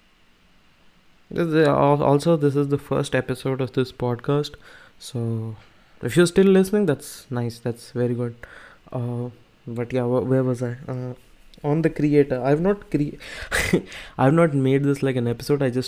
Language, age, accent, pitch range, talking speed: Hindi, 20-39, native, 120-150 Hz, 170 wpm